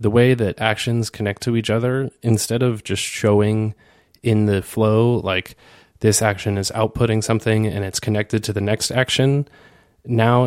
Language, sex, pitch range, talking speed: English, male, 100-115 Hz, 165 wpm